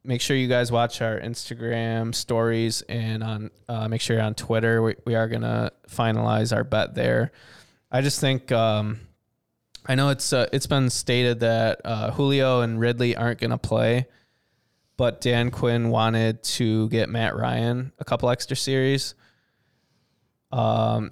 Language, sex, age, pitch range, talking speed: English, male, 20-39, 110-120 Hz, 165 wpm